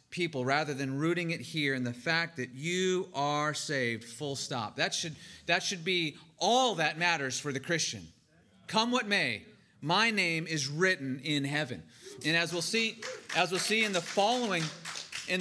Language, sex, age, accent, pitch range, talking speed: English, male, 30-49, American, 145-190 Hz, 185 wpm